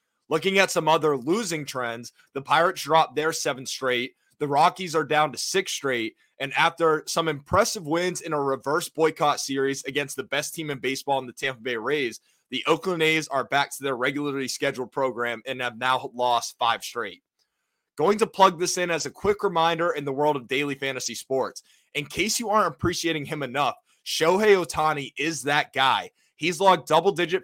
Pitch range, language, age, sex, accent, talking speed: 135-165 Hz, English, 20-39, male, American, 190 wpm